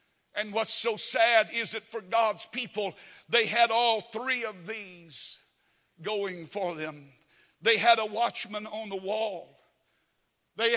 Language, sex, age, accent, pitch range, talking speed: English, male, 60-79, American, 215-280 Hz, 145 wpm